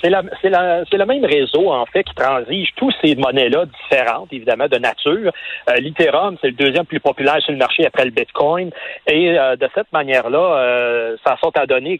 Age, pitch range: 40-59, 130-195 Hz